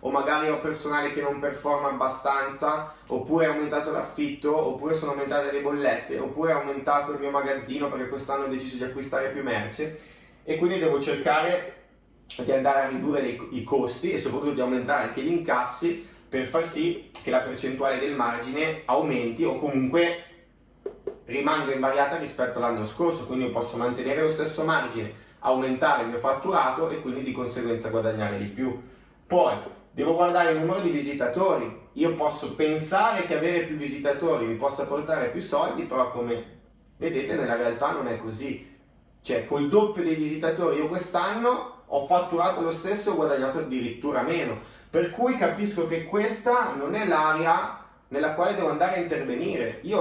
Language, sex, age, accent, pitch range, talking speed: Italian, male, 20-39, native, 130-165 Hz, 170 wpm